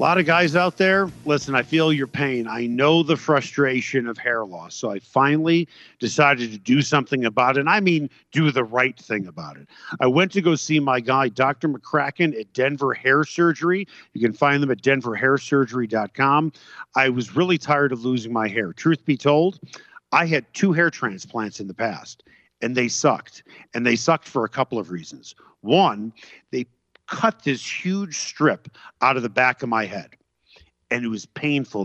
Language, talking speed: English, 190 wpm